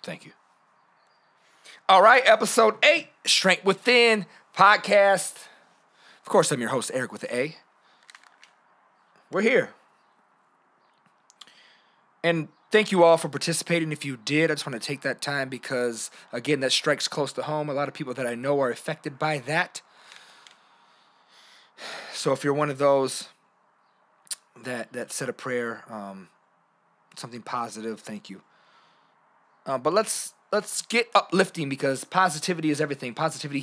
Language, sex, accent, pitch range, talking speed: English, male, American, 145-240 Hz, 145 wpm